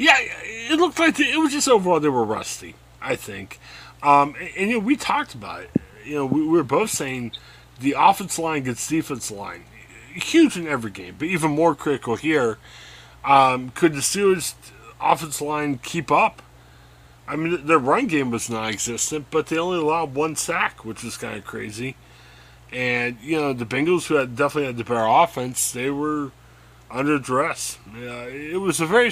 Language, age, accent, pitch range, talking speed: English, 30-49, American, 120-170 Hz, 190 wpm